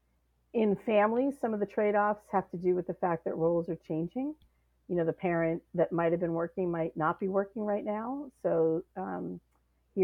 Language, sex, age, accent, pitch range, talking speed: English, female, 50-69, American, 160-190 Hz, 210 wpm